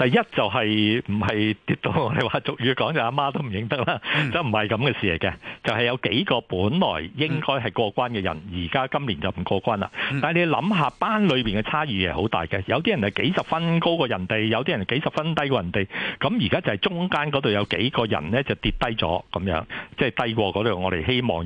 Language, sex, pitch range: Chinese, male, 100-135 Hz